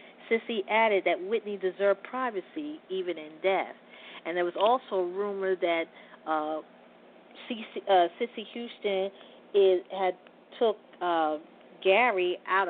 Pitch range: 185-225 Hz